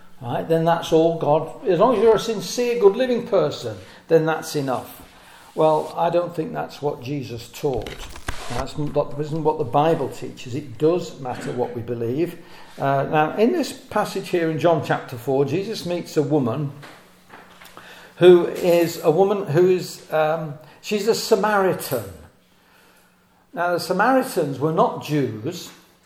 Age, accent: 50-69, British